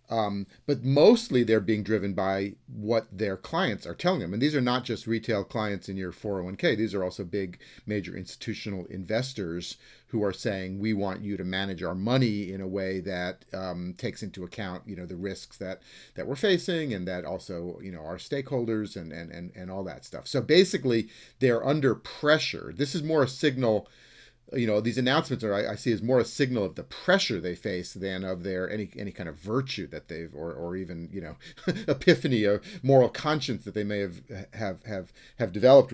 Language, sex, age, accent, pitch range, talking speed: English, male, 40-59, American, 95-125 Hz, 205 wpm